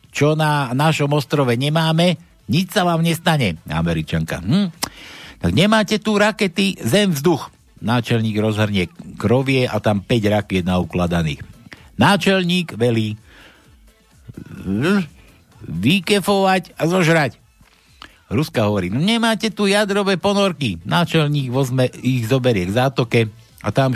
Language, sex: Slovak, male